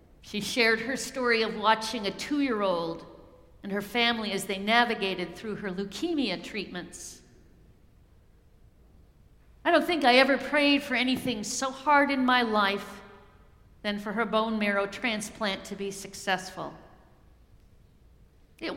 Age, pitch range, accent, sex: 50-69, 190-235 Hz, American, female